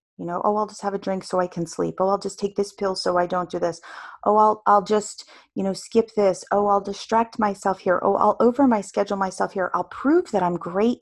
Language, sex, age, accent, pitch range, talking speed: English, female, 30-49, American, 175-210 Hz, 260 wpm